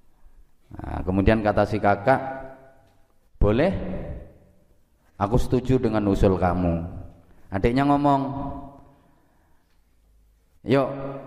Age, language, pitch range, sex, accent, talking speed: 30-49, Indonesian, 95-135 Hz, male, native, 75 wpm